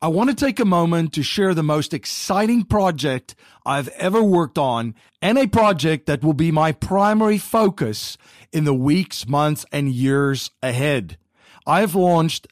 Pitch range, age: 145-205 Hz, 50-69